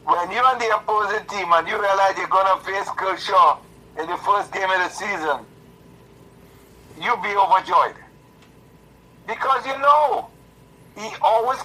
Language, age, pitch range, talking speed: English, 60-79, 160-185 Hz, 150 wpm